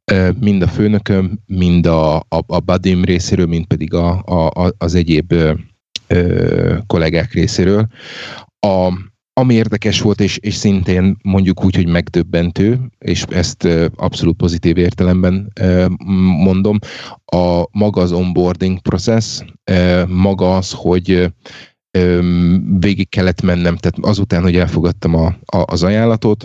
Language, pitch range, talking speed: Hungarian, 90-100 Hz, 130 wpm